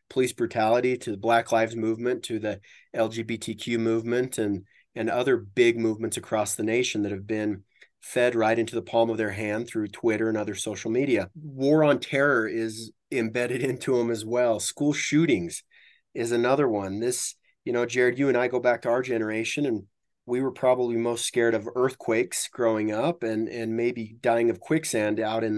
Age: 30-49